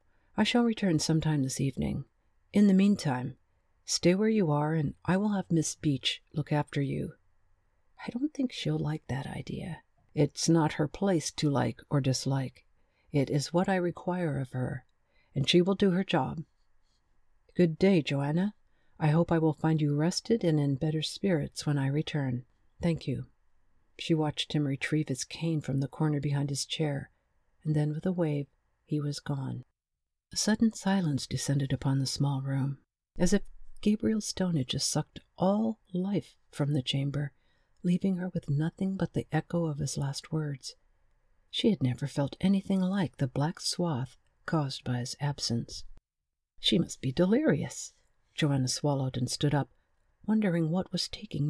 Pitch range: 135-175 Hz